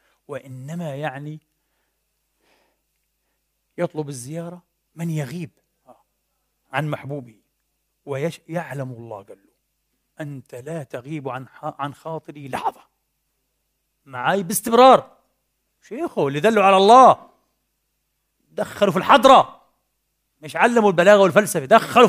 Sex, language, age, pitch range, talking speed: male, Arabic, 40-59, 145-195 Hz, 90 wpm